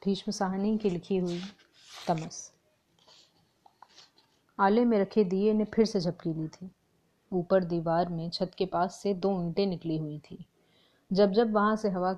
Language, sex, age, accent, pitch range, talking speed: Hindi, female, 30-49, native, 175-200 Hz, 165 wpm